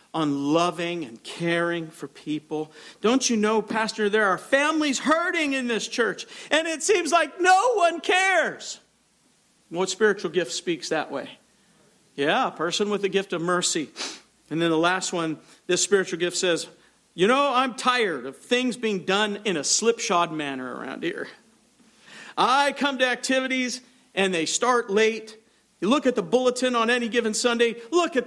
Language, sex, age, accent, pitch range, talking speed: English, male, 50-69, American, 165-245 Hz, 170 wpm